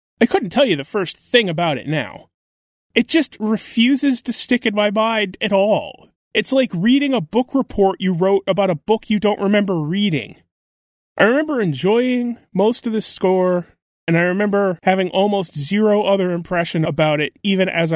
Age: 30-49